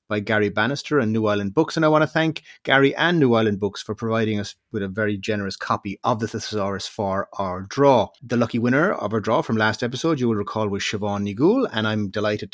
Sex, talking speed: male, 235 wpm